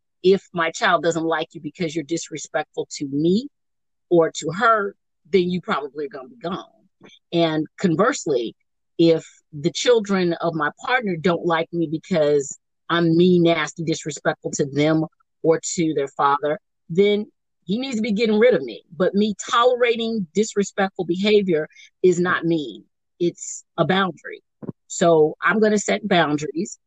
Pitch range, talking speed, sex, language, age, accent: 160-205 Hz, 155 wpm, female, English, 40-59, American